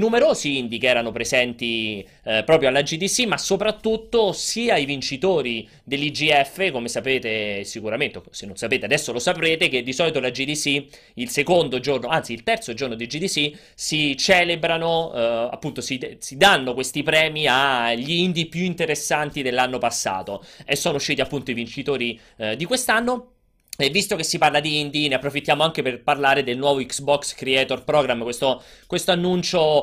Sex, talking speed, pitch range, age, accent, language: male, 165 wpm, 125-170 Hz, 30-49, native, Italian